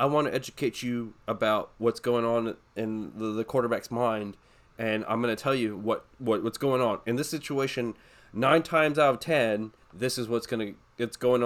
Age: 20-39